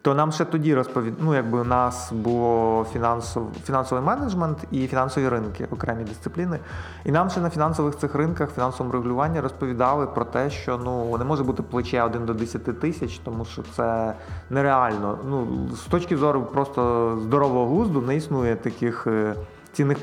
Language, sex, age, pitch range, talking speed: Ukrainian, male, 20-39, 115-140 Hz, 160 wpm